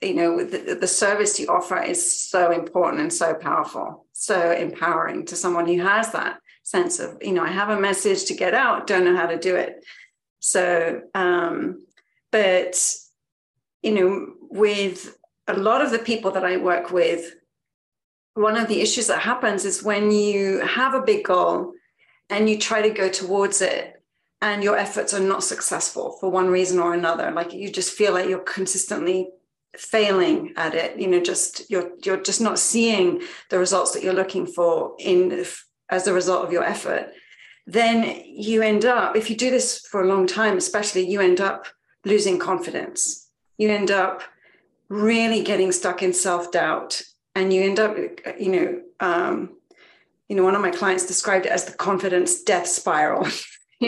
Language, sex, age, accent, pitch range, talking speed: English, female, 40-59, British, 185-230 Hz, 180 wpm